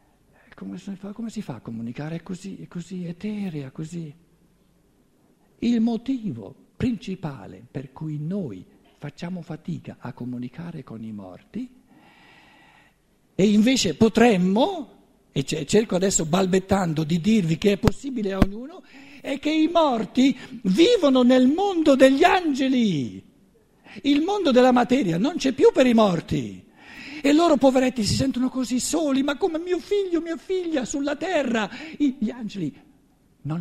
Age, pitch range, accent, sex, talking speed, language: 50-69, 175-270 Hz, native, male, 135 wpm, Italian